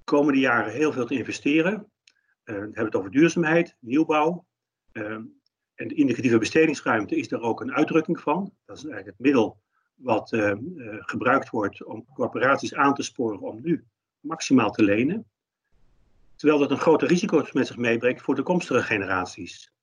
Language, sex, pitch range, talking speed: Dutch, male, 130-165 Hz, 170 wpm